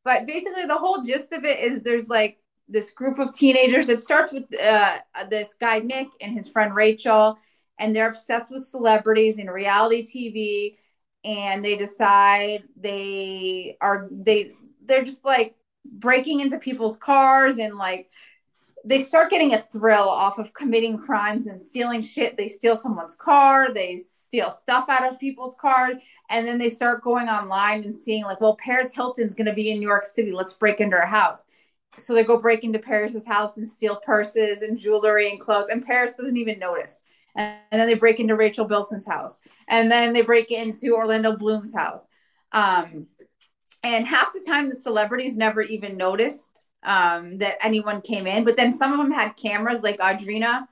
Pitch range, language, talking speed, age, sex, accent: 210-250 Hz, English, 180 wpm, 30-49, female, American